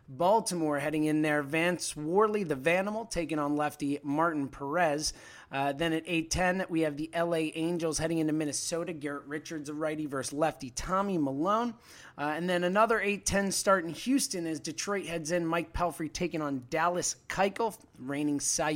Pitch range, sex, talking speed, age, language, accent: 150-185 Hz, male, 170 wpm, 30-49, English, American